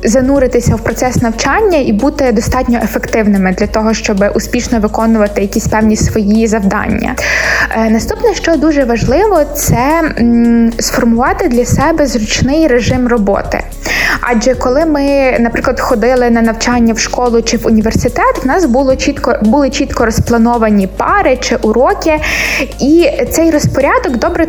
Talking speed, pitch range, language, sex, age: 130 wpm, 230-290 Hz, Ukrainian, female, 20-39